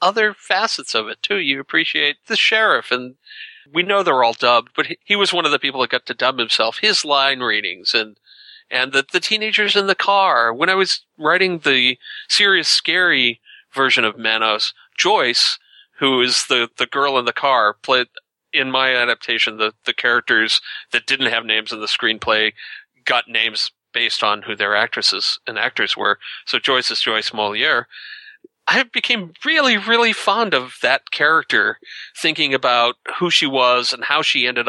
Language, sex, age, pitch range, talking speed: English, male, 40-59, 125-190 Hz, 180 wpm